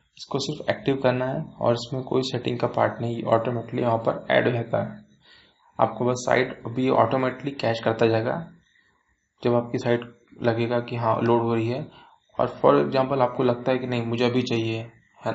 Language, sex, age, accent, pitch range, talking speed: Hindi, male, 20-39, native, 115-130 Hz, 195 wpm